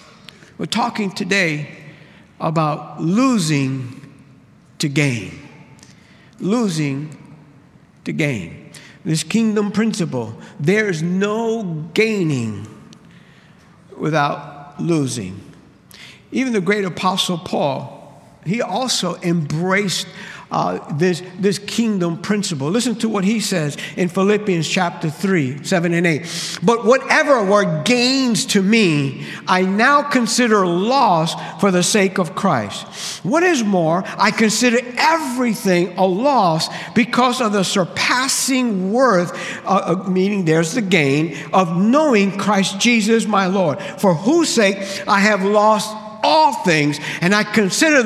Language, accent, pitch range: English, American, 170-220 Hz